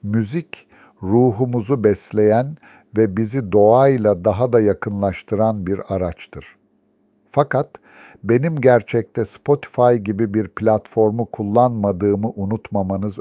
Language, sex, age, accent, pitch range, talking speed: Turkish, male, 60-79, native, 100-120 Hz, 90 wpm